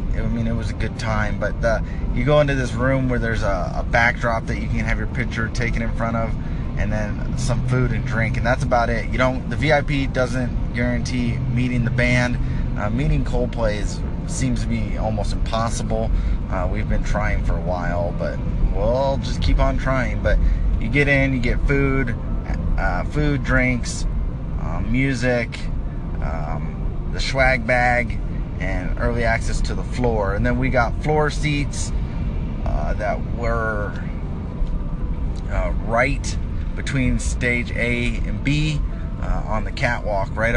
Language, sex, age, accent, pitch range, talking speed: English, male, 20-39, American, 90-125 Hz, 165 wpm